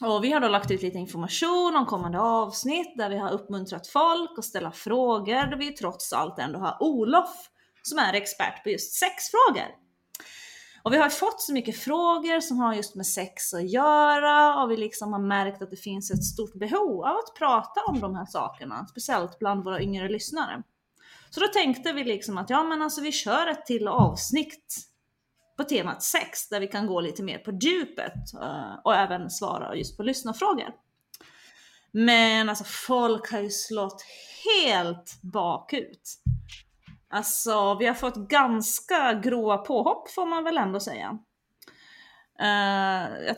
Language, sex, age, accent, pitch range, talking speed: Swedish, female, 30-49, native, 200-295 Hz, 165 wpm